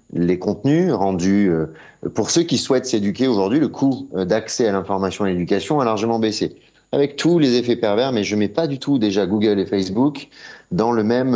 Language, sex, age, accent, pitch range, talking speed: French, male, 30-49, French, 95-120 Hz, 210 wpm